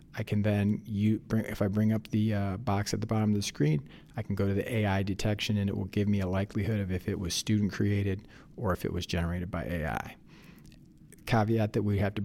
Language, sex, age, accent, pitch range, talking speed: English, male, 40-59, American, 95-110 Hz, 235 wpm